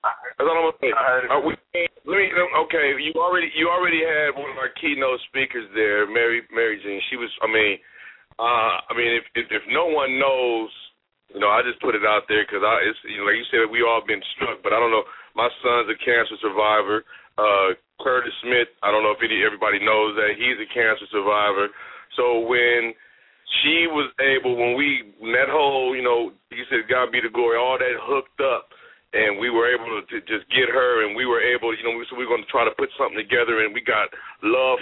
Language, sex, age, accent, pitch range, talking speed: English, male, 30-49, American, 120-155 Hz, 225 wpm